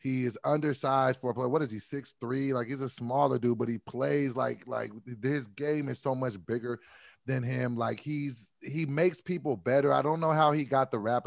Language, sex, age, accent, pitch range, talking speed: English, male, 30-49, American, 125-150 Hz, 225 wpm